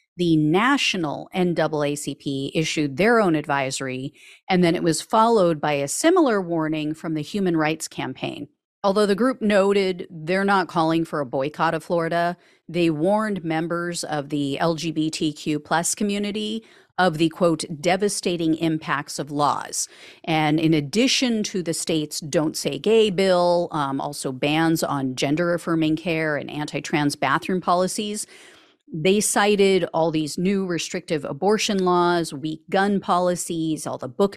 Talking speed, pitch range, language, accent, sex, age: 140 wpm, 155-200 Hz, English, American, female, 40-59